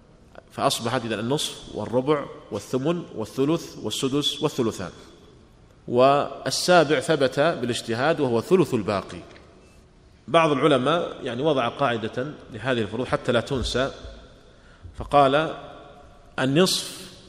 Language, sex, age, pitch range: Arabic, male, 40-59, 120-155 Hz